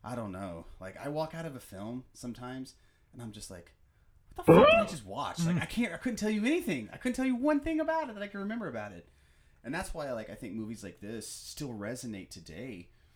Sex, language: male, English